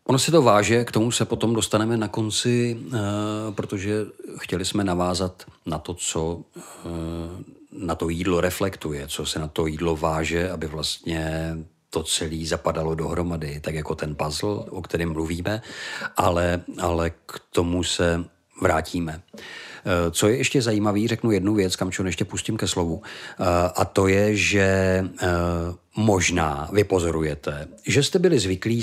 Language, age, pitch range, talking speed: Czech, 50-69, 85-105 Hz, 145 wpm